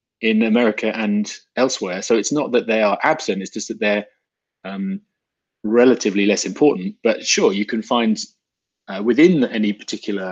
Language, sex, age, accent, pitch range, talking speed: English, male, 30-49, British, 105-155 Hz, 165 wpm